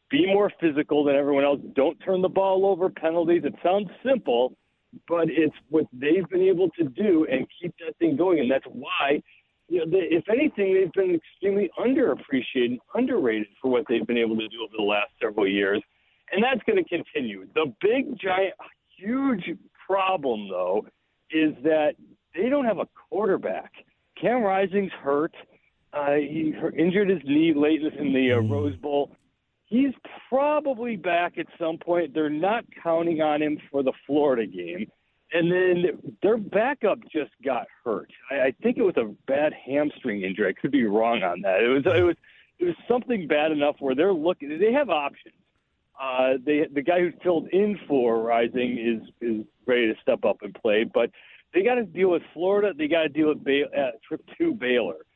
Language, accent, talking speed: English, American, 185 wpm